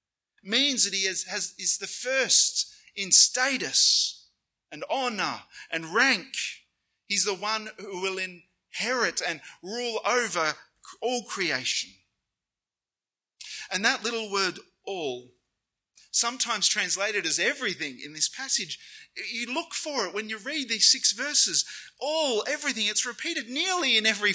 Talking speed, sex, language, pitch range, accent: 130 wpm, male, English, 145-230 Hz, Australian